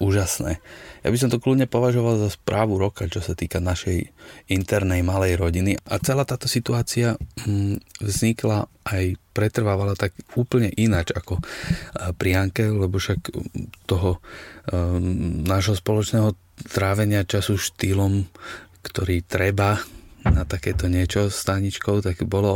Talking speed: 130 wpm